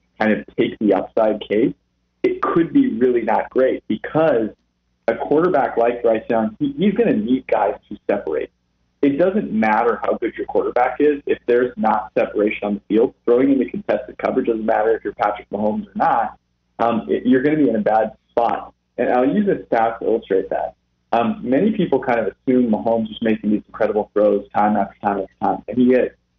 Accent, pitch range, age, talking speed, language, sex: American, 105-145 Hz, 30-49, 210 wpm, English, male